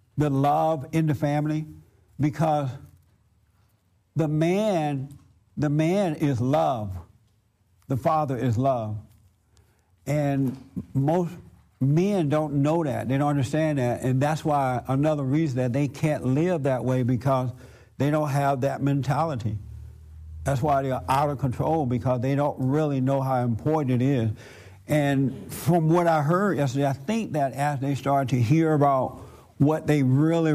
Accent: American